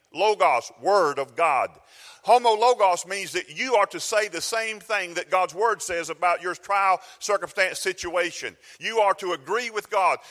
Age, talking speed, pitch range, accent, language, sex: 40-59, 175 wpm, 190-240 Hz, American, English, male